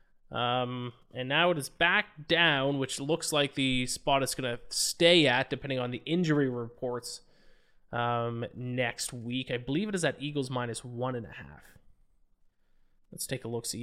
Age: 20-39